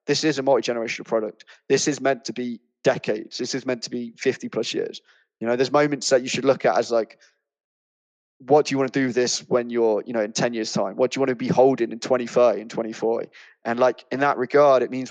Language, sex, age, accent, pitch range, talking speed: Filipino, male, 20-39, British, 125-155 Hz, 260 wpm